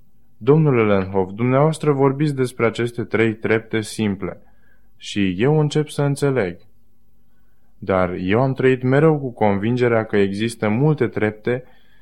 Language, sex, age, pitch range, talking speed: Romanian, male, 20-39, 100-125 Hz, 125 wpm